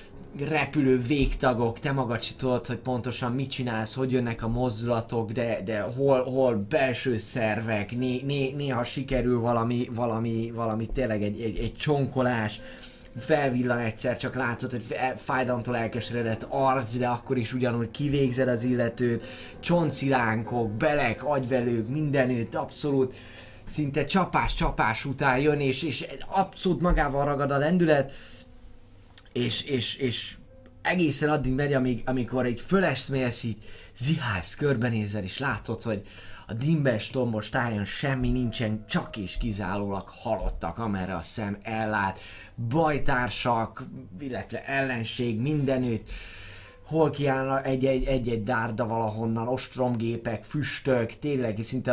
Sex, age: male, 20-39